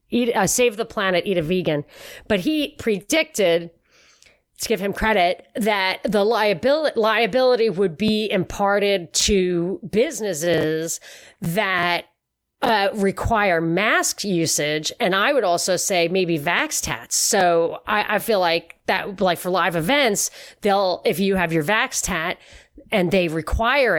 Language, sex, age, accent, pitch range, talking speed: English, female, 40-59, American, 175-225 Hz, 140 wpm